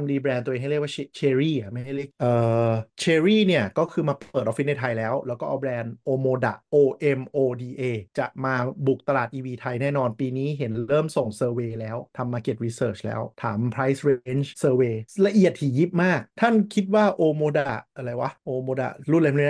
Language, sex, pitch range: Thai, male, 120-150 Hz